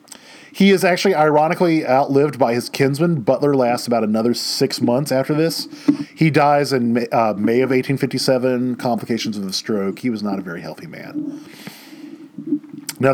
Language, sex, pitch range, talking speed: English, male, 135-225 Hz, 155 wpm